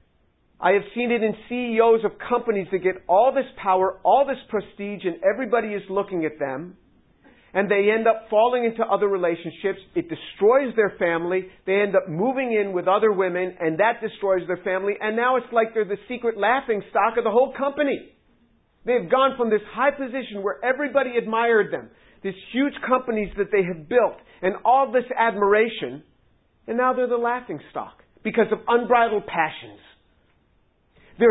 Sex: male